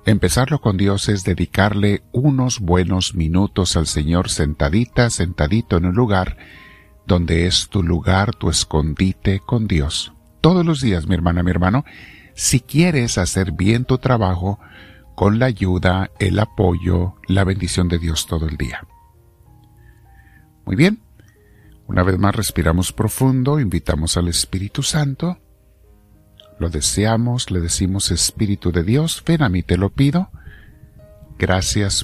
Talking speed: 135 wpm